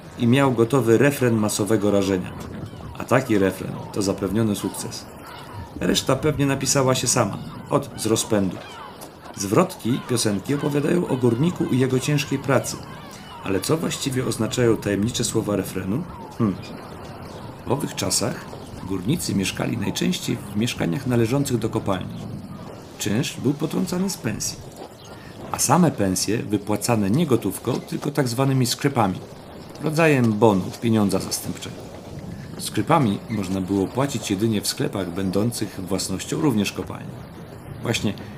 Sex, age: male, 40-59